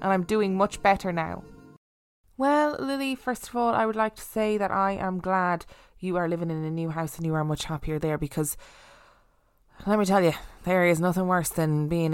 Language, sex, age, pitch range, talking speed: English, female, 20-39, 155-200 Hz, 215 wpm